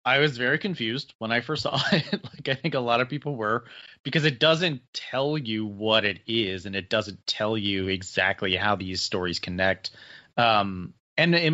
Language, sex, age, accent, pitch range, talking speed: English, male, 30-49, American, 100-140 Hz, 200 wpm